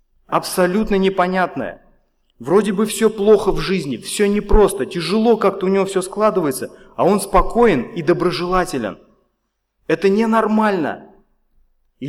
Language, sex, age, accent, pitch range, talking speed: Russian, male, 30-49, native, 140-200 Hz, 120 wpm